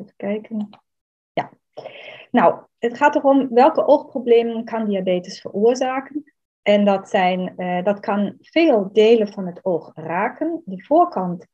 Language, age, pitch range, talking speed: Dutch, 30-49, 180-235 Hz, 135 wpm